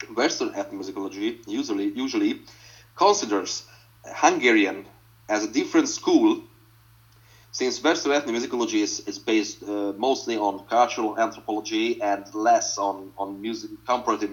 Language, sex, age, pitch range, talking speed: English, male, 30-49, 110-160 Hz, 115 wpm